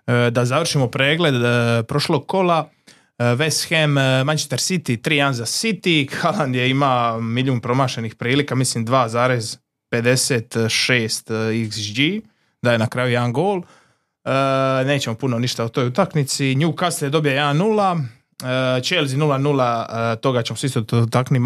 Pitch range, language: 120-155 Hz, Croatian